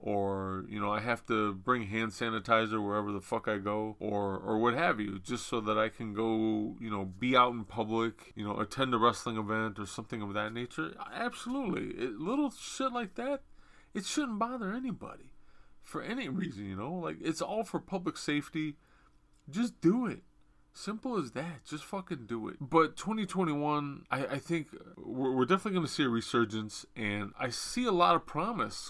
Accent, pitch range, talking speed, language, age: American, 105-150 Hz, 190 wpm, English, 20-39